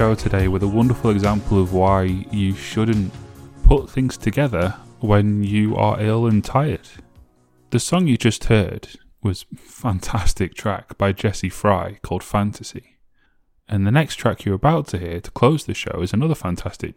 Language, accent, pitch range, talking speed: English, British, 100-125 Hz, 165 wpm